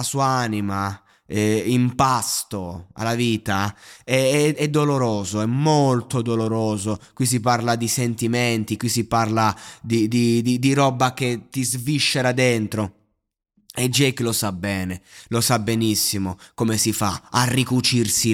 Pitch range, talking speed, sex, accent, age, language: 115-155 Hz, 145 wpm, male, native, 20-39, Italian